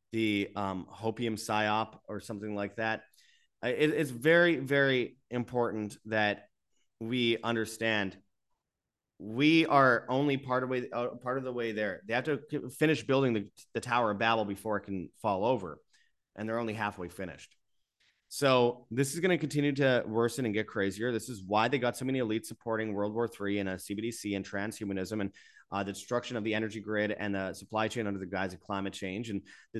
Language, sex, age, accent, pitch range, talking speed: English, male, 30-49, American, 105-135 Hz, 190 wpm